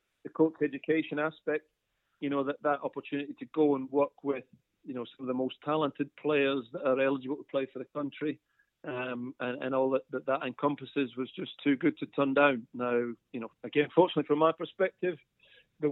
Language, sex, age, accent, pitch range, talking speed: English, male, 40-59, British, 130-150 Hz, 205 wpm